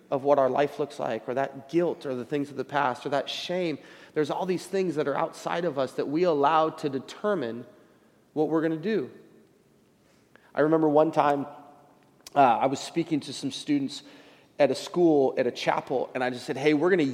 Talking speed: 215 wpm